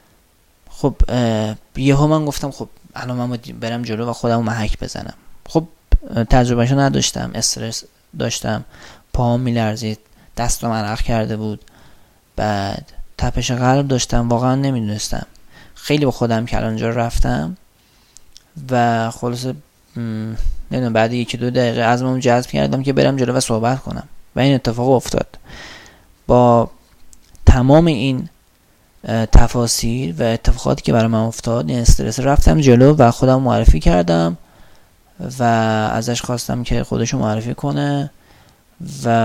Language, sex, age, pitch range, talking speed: Persian, male, 20-39, 110-130 Hz, 120 wpm